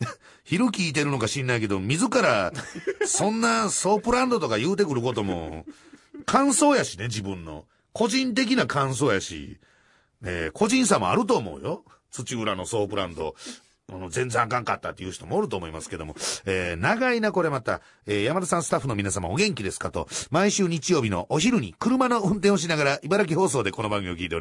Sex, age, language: male, 40-59, Japanese